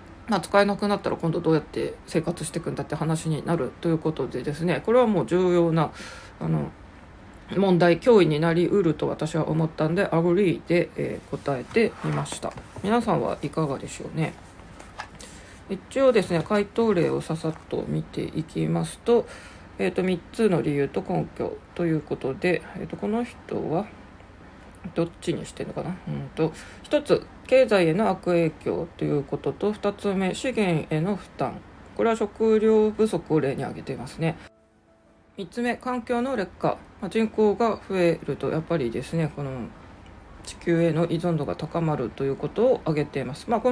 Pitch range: 140-200 Hz